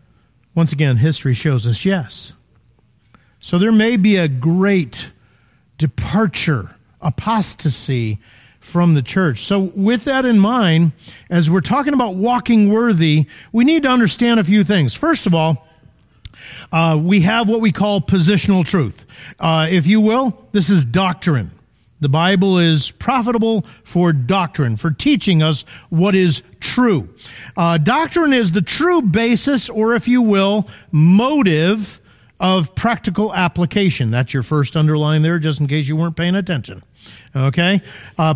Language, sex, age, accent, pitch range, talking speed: English, male, 50-69, American, 160-215 Hz, 145 wpm